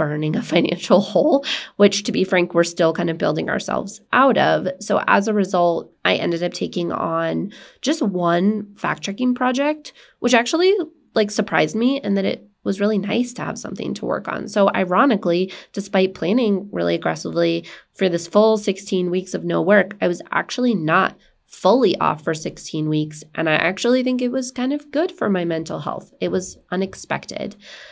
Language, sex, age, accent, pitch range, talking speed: English, female, 20-39, American, 170-225 Hz, 185 wpm